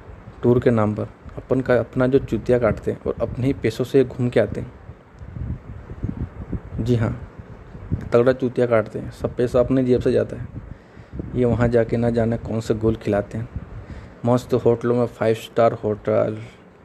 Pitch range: 110-130 Hz